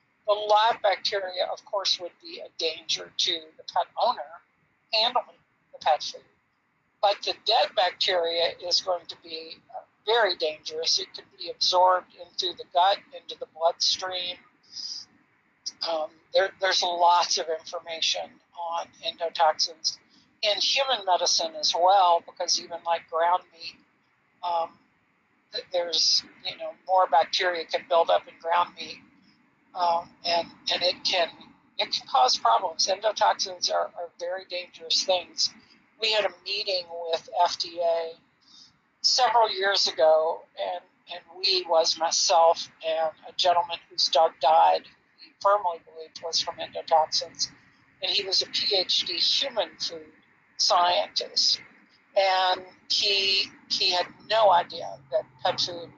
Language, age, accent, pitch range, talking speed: English, 60-79, American, 170-245 Hz, 135 wpm